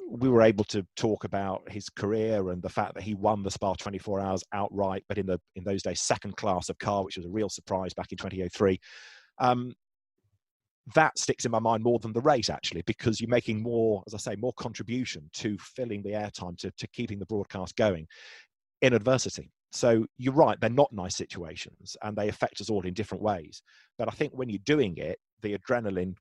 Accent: British